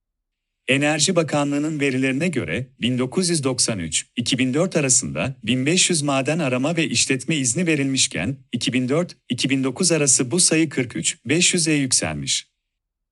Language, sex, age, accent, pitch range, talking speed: Turkish, male, 40-59, native, 120-150 Hz, 85 wpm